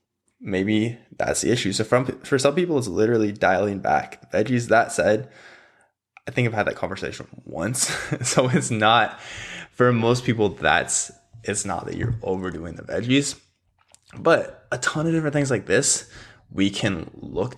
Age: 20-39